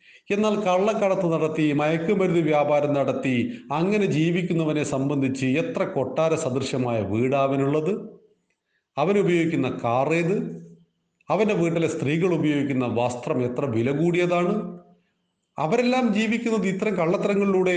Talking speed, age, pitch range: 90 wpm, 40-59, 145-195 Hz